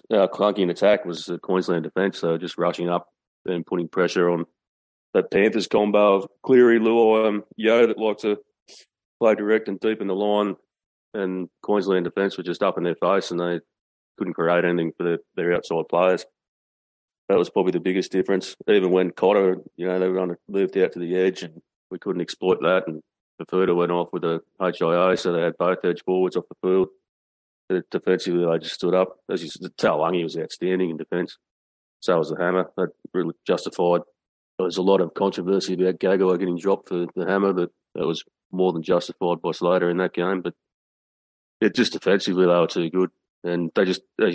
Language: English